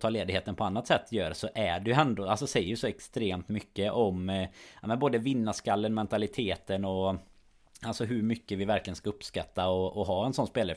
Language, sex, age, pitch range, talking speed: Swedish, male, 20-39, 95-115 Hz, 195 wpm